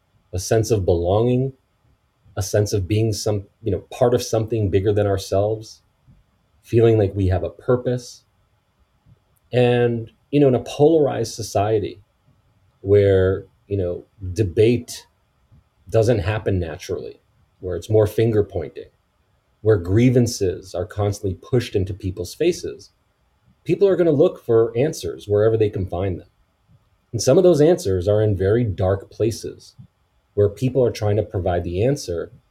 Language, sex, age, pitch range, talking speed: English, male, 30-49, 95-120 Hz, 150 wpm